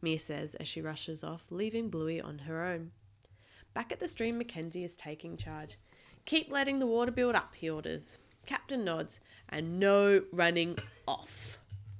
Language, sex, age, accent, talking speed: English, female, 20-39, Australian, 165 wpm